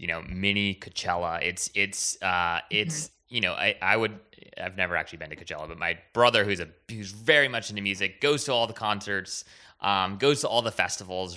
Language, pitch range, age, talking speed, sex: English, 90-120 Hz, 20-39, 210 wpm, male